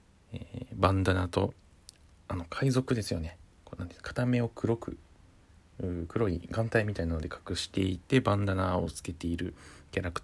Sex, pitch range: male, 85-115 Hz